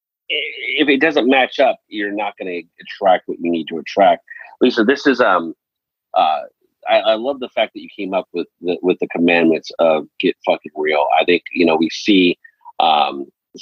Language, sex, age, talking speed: English, male, 40-59, 200 wpm